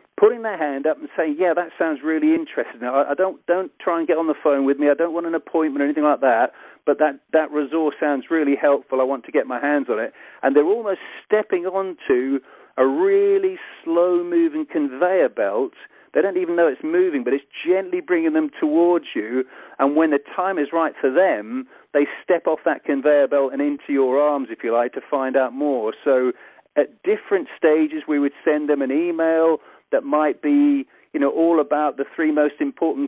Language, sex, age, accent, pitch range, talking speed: English, male, 40-59, British, 140-205 Hz, 210 wpm